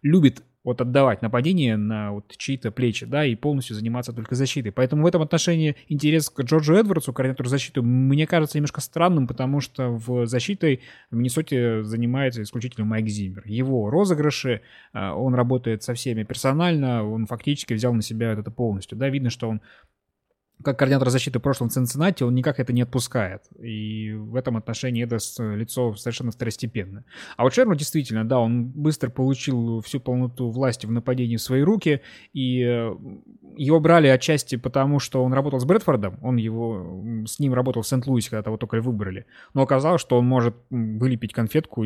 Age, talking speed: 20-39, 170 wpm